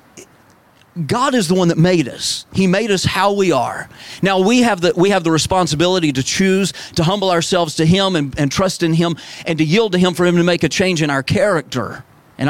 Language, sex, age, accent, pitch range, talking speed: English, male, 40-59, American, 130-170 Hz, 220 wpm